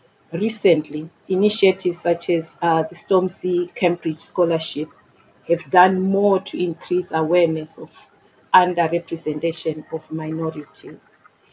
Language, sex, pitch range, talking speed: English, female, 165-180 Hz, 100 wpm